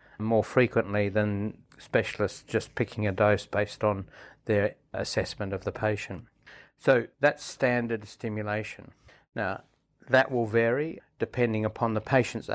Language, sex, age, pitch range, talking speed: English, male, 60-79, 100-115 Hz, 130 wpm